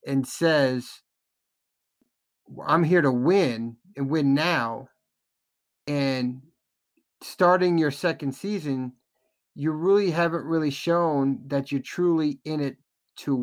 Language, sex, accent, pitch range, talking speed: English, male, American, 130-160 Hz, 115 wpm